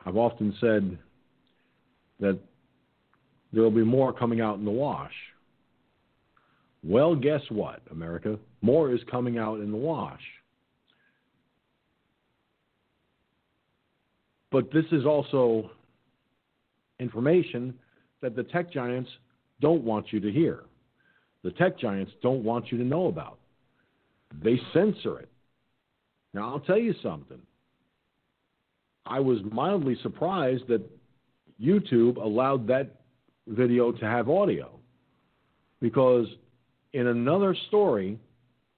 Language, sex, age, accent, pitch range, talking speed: English, male, 50-69, American, 110-130 Hz, 110 wpm